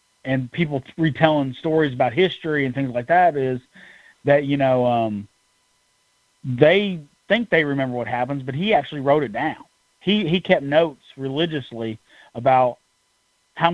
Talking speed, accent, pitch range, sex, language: 150 wpm, American, 120-155 Hz, male, English